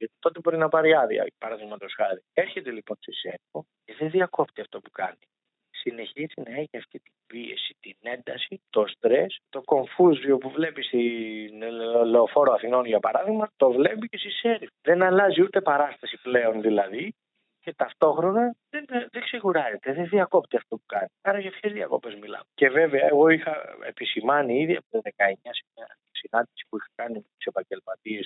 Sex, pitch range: male, 115-190 Hz